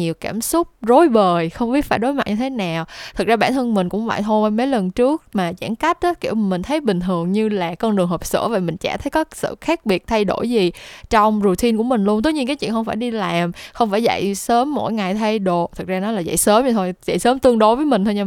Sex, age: female, 10-29